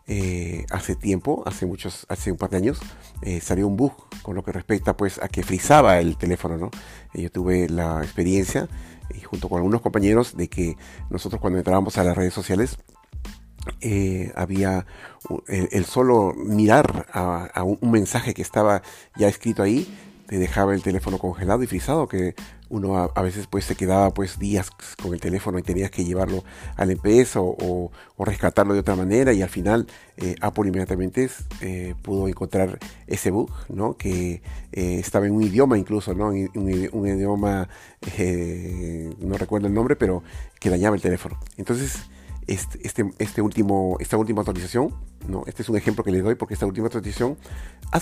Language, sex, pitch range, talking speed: Spanish, male, 90-105 Hz, 185 wpm